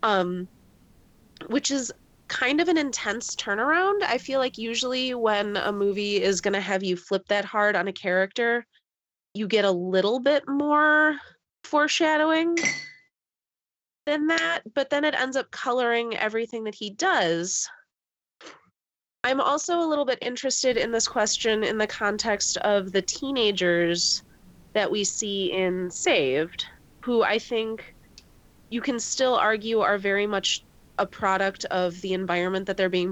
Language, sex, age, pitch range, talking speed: English, female, 30-49, 185-245 Hz, 150 wpm